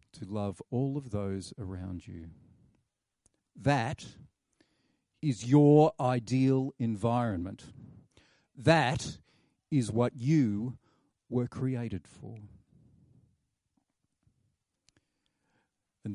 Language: English